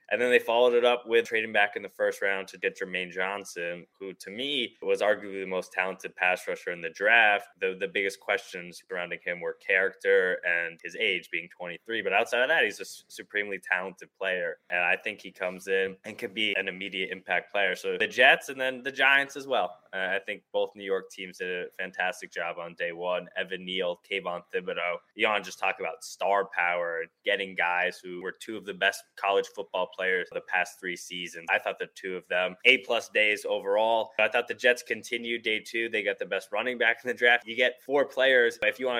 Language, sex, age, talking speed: English, male, 20-39, 225 wpm